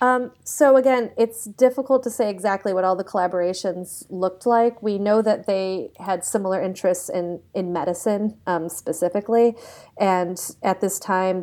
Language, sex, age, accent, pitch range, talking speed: English, female, 30-49, American, 175-200 Hz, 160 wpm